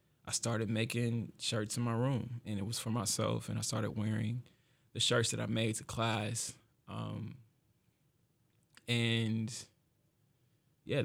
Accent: American